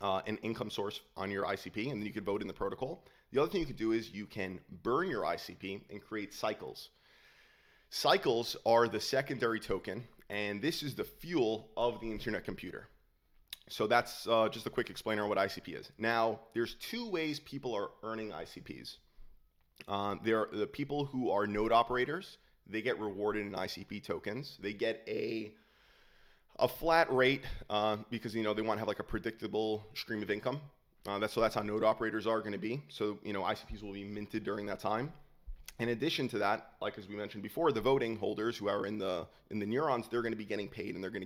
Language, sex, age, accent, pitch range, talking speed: English, male, 30-49, American, 105-120 Hz, 210 wpm